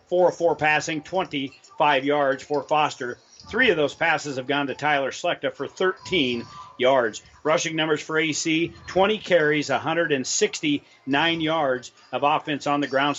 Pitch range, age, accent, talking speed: 140-170 Hz, 40-59, American, 135 wpm